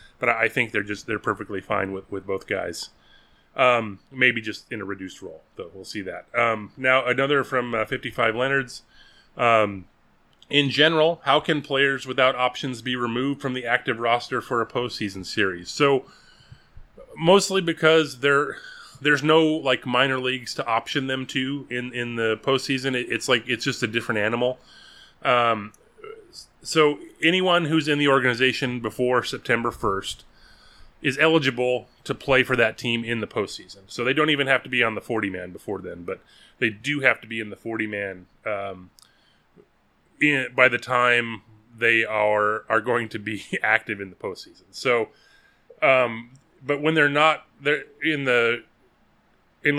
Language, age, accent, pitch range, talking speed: English, 30-49, American, 115-140 Hz, 170 wpm